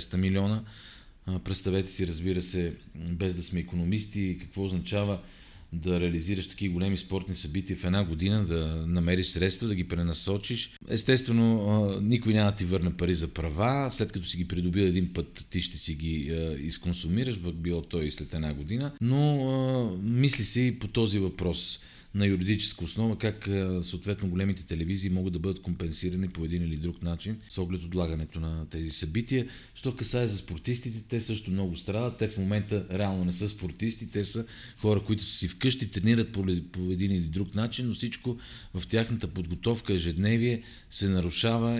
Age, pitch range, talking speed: 40-59, 90-105 Hz, 170 wpm